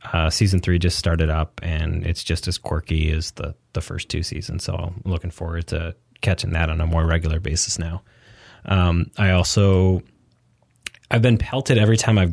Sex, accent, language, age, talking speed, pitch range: male, American, English, 30-49, 190 wpm, 85-105 Hz